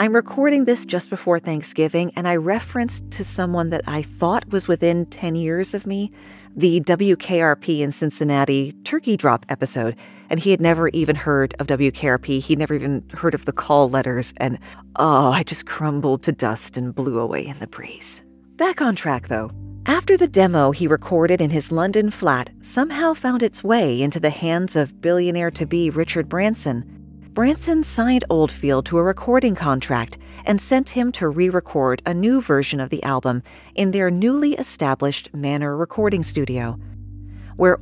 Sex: female